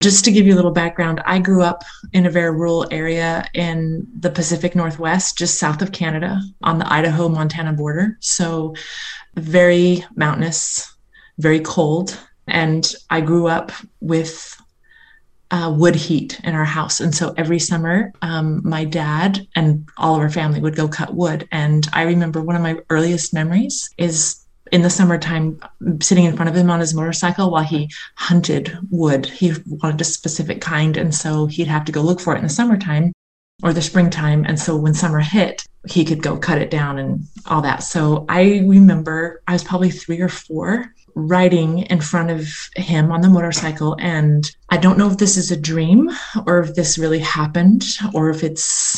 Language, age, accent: English, 30-49, American